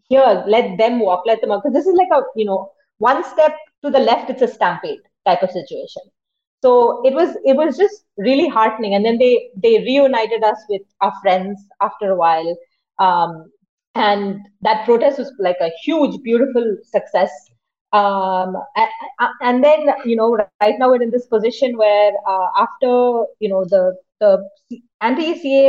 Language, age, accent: English, 30-49, Indian